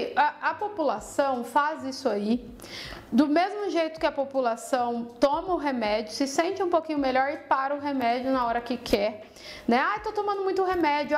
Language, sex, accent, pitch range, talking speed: Portuguese, female, Brazilian, 230-305 Hz, 185 wpm